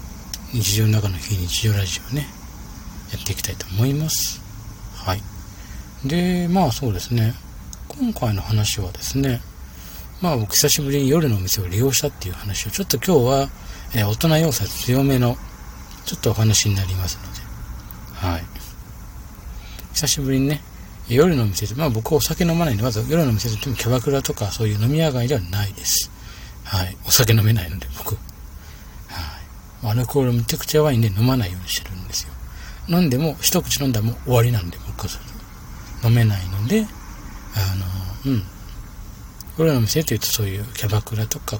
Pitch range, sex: 95-130 Hz, male